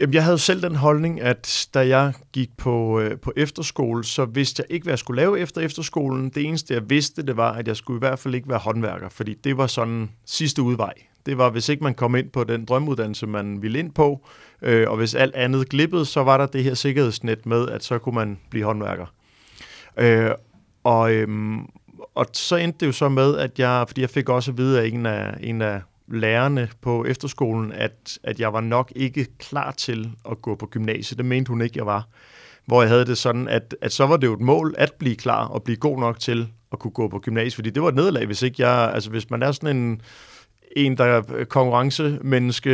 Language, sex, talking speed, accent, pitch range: Danish, male, 235 wpm, native, 115-140 Hz